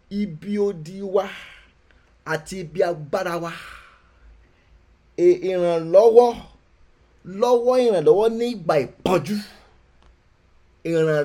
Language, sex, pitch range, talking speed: English, male, 170-240 Hz, 80 wpm